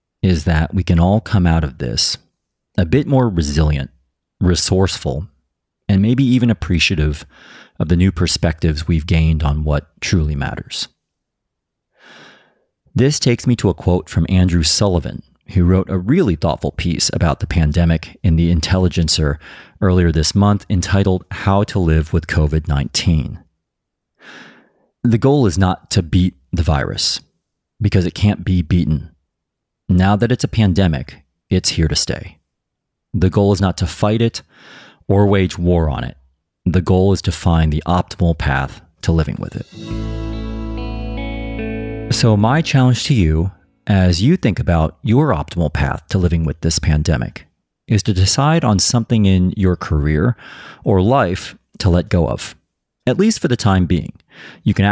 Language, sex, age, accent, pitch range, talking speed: English, male, 40-59, American, 80-105 Hz, 155 wpm